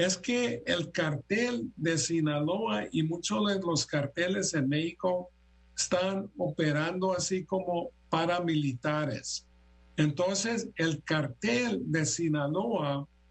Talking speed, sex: 105 wpm, male